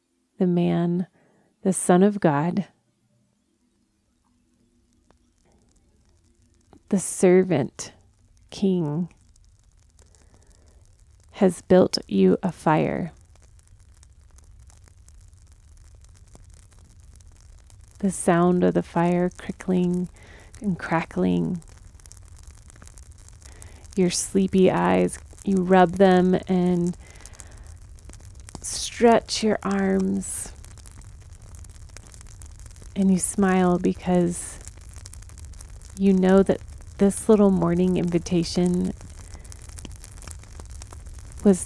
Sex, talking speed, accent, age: female, 65 wpm, American, 30-49